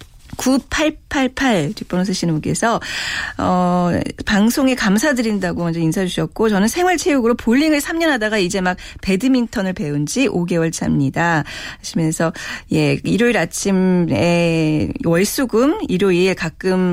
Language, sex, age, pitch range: Korean, female, 40-59, 180-265 Hz